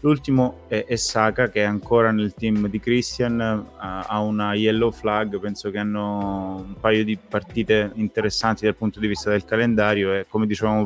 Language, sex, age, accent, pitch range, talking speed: Italian, male, 20-39, native, 100-110 Hz, 175 wpm